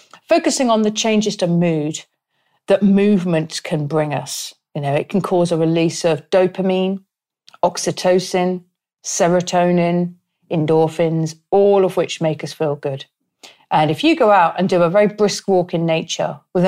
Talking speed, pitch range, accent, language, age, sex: 160 wpm, 165-200 Hz, British, English, 40-59, female